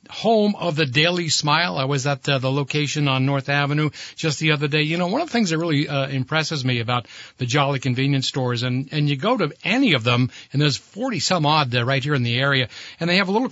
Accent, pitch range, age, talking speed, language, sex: American, 145-180 Hz, 60-79, 260 wpm, English, male